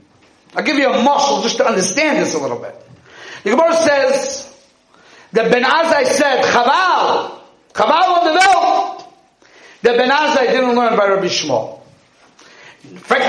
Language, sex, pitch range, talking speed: English, male, 240-340 Hz, 150 wpm